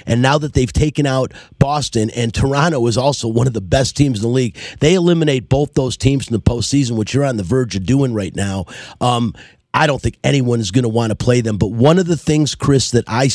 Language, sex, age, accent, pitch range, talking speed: English, male, 40-59, American, 120-150 Hz, 250 wpm